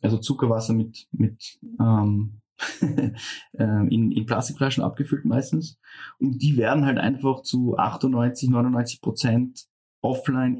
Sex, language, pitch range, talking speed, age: male, German, 115-130 Hz, 100 wpm, 20-39